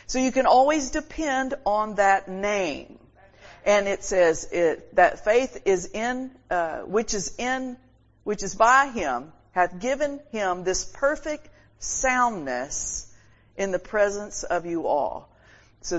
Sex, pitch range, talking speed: female, 145-205 Hz, 140 wpm